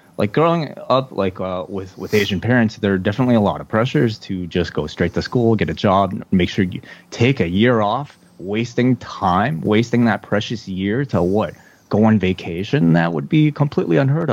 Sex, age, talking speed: male, 20-39, 200 wpm